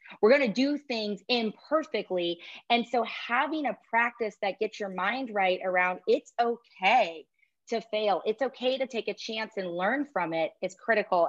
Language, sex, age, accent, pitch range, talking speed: English, female, 30-49, American, 180-225 Hz, 170 wpm